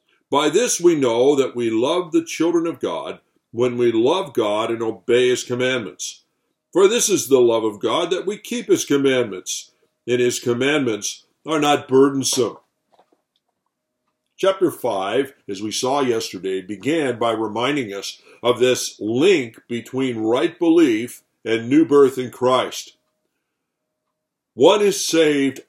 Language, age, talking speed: English, 60-79, 140 wpm